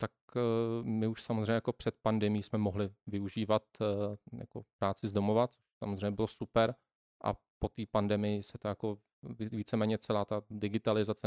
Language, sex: Czech, male